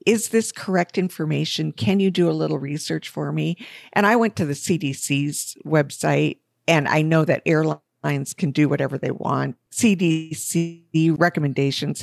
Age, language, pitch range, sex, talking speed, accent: 50-69, English, 140-170 Hz, female, 155 wpm, American